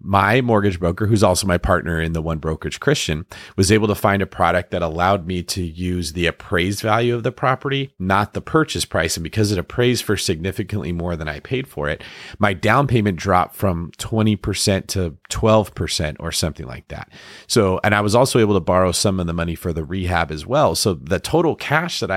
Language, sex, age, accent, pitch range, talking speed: English, male, 30-49, American, 90-115 Hz, 215 wpm